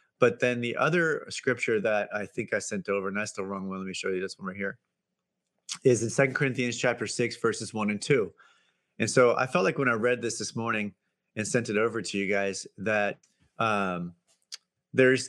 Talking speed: 220 wpm